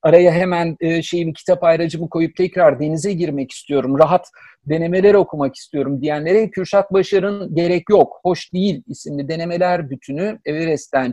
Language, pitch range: Turkish, 145-195 Hz